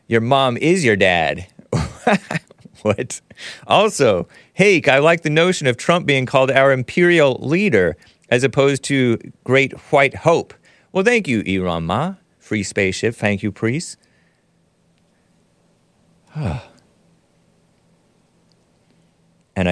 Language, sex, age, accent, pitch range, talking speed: English, male, 40-59, American, 105-160 Hz, 110 wpm